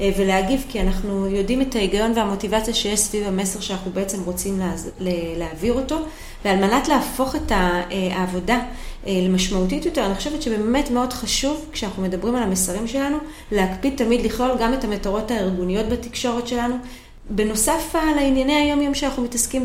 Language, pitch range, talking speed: Hebrew, 195-245 Hz, 145 wpm